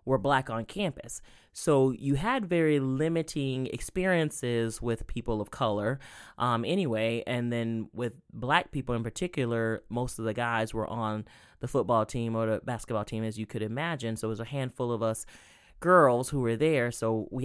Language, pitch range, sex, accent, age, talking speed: English, 115-145 Hz, male, American, 10-29, 180 wpm